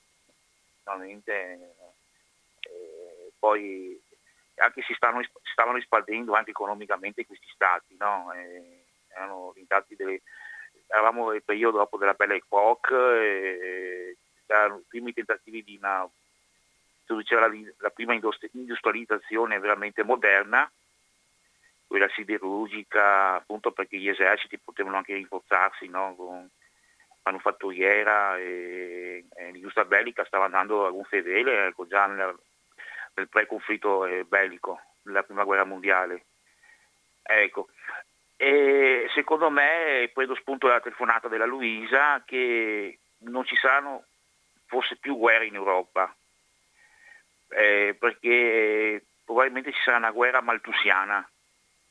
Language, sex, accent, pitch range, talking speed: Italian, male, native, 95-130 Hz, 105 wpm